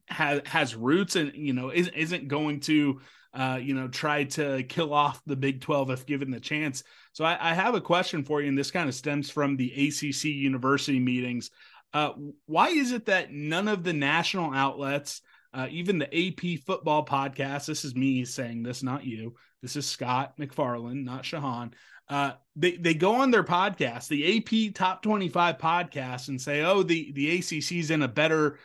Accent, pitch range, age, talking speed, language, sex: American, 135-165 Hz, 30-49, 190 wpm, English, male